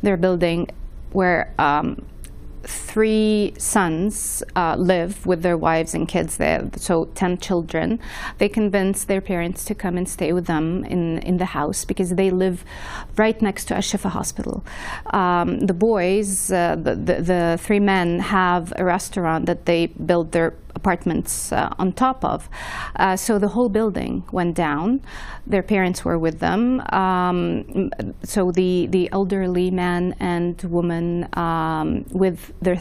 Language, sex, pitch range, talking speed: English, female, 175-200 Hz, 150 wpm